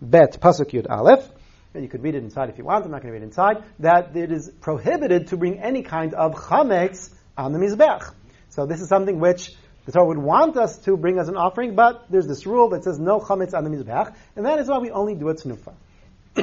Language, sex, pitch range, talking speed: English, male, 155-205 Hz, 245 wpm